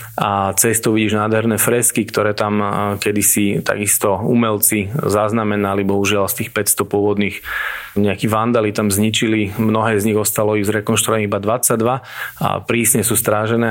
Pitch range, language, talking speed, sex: 105-115 Hz, Slovak, 140 wpm, male